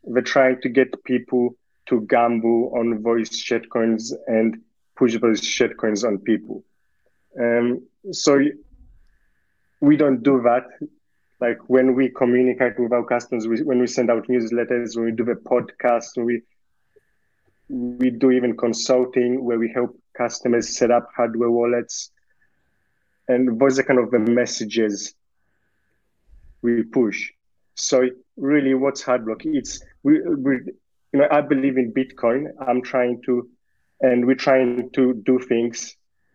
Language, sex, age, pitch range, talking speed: English, male, 30-49, 115-125 Hz, 140 wpm